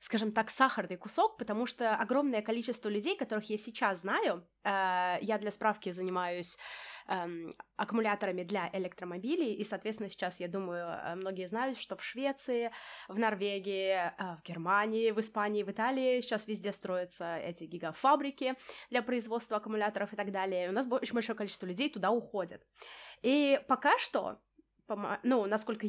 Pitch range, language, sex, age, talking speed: 200-260 Hz, Russian, female, 20-39, 155 wpm